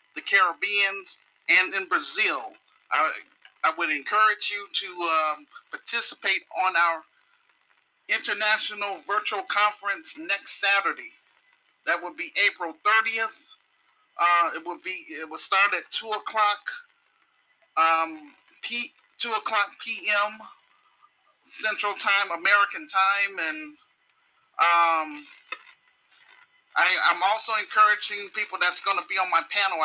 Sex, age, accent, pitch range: male, 40-59, American, 195-315 Hz